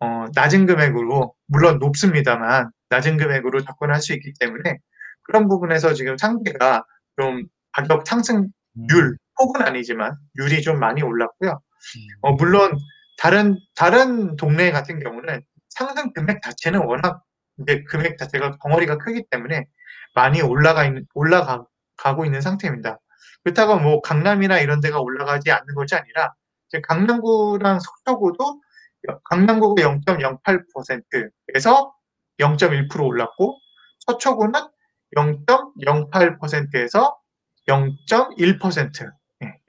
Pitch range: 140-200 Hz